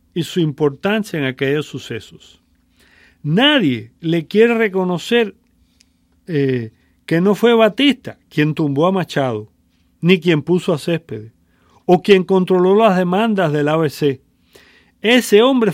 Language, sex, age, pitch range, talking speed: English, male, 40-59, 130-190 Hz, 125 wpm